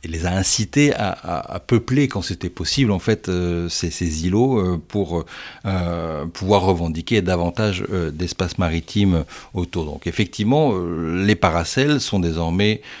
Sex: male